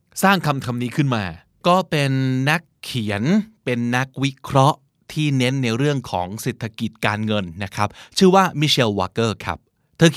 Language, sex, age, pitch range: Thai, male, 20-39, 120-165 Hz